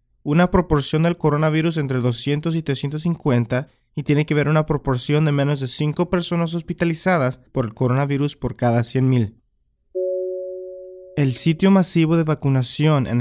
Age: 20-39